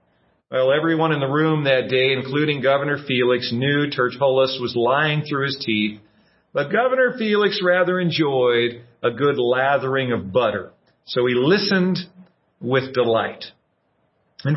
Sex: male